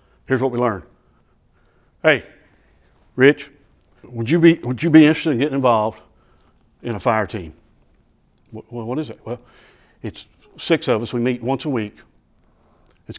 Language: English